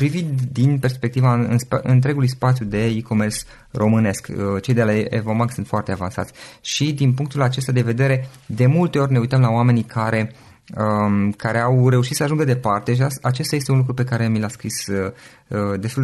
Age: 20-39